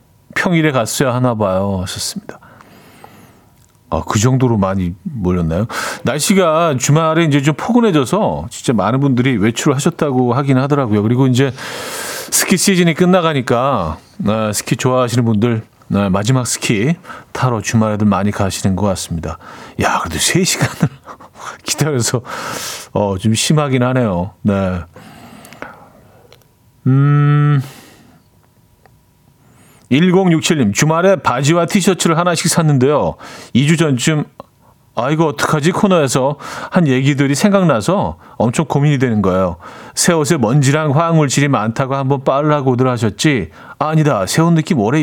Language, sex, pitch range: Korean, male, 120-160 Hz